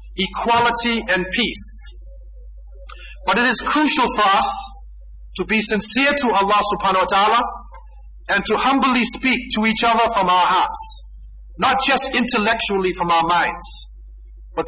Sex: male